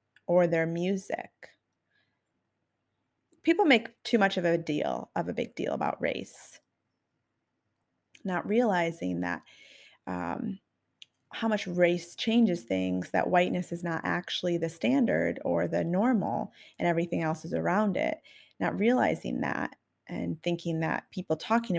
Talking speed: 135 wpm